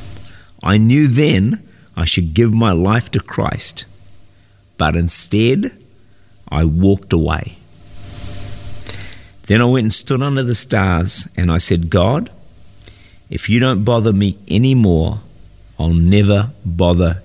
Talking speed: 125 wpm